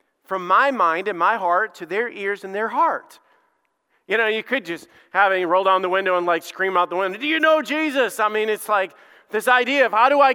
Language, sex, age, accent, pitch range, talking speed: English, male, 40-59, American, 185-230 Hz, 250 wpm